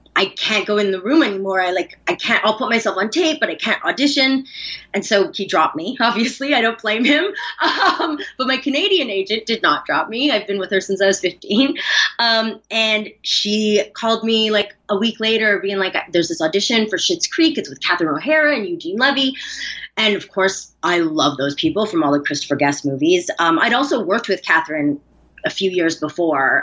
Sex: female